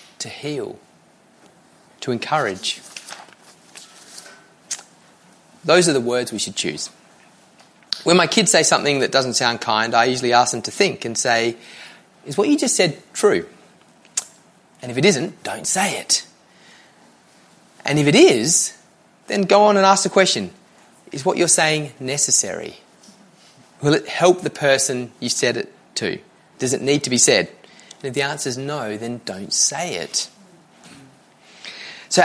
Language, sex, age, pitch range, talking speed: English, male, 30-49, 120-175 Hz, 155 wpm